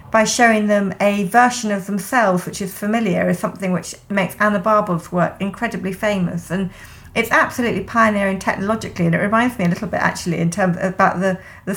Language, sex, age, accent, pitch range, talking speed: English, female, 50-69, British, 190-225 Hz, 195 wpm